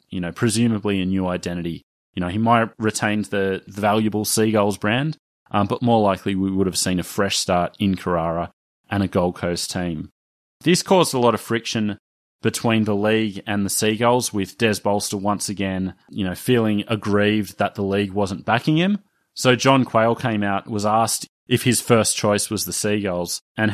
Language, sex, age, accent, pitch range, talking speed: English, male, 30-49, Australian, 100-125 Hz, 190 wpm